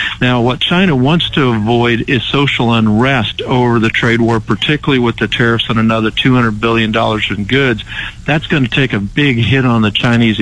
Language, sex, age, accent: English, male, 50-69, American